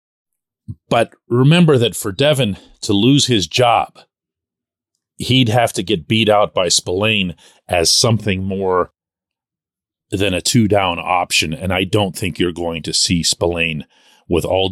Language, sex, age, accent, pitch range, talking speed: English, male, 40-59, American, 90-125 Hz, 145 wpm